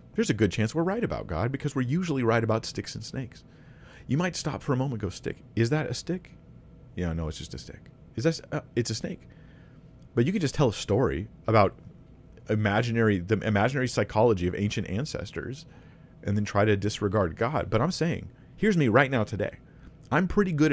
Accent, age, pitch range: American, 40-59, 95-130 Hz